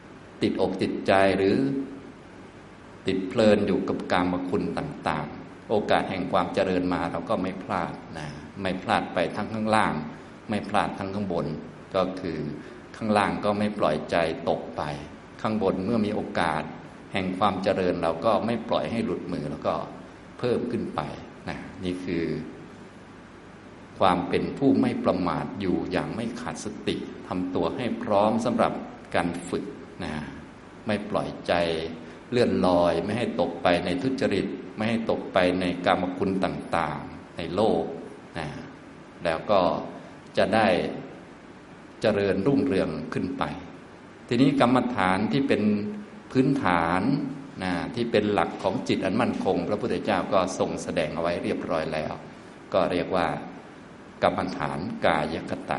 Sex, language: male, Thai